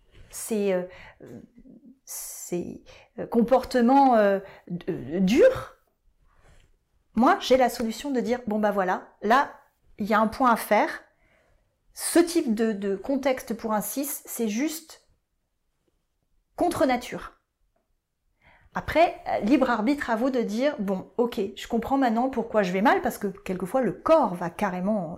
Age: 30-49